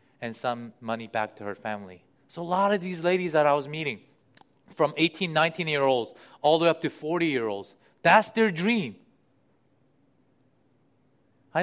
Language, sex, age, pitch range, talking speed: English, male, 30-49, 130-175 Hz, 155 wpm